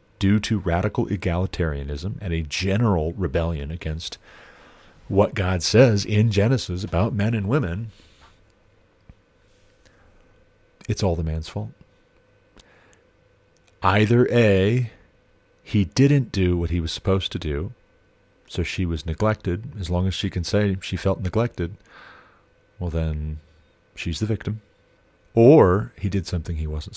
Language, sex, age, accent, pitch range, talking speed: English, male, 40-59, American, 85-110 Hz, 130 wpm